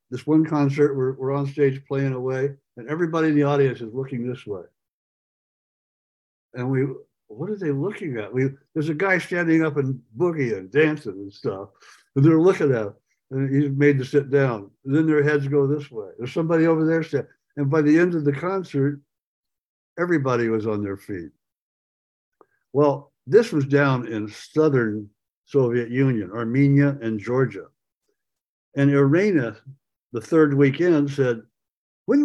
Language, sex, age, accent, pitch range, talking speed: English, male, 60-79, American, 130-175 Hz, 160 wpm